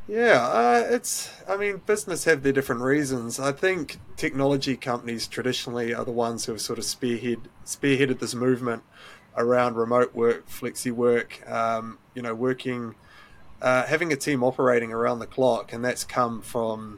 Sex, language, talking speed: male, English, 165 wpm